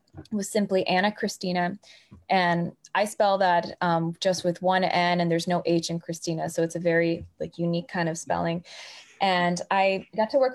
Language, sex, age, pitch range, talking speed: English, female, 20-39, 170-195 Hz, 190 wpm